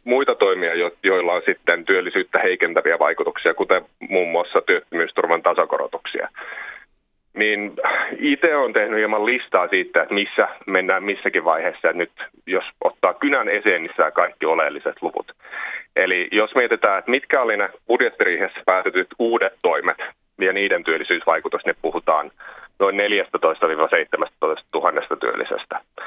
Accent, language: native, Finnish